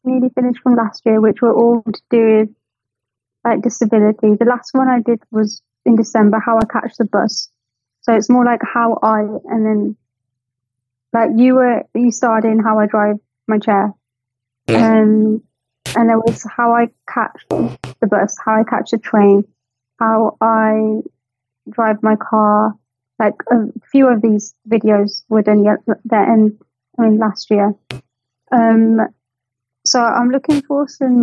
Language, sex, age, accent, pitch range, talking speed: English, female, 30-49, British, 205-235 Hz, 165 wpm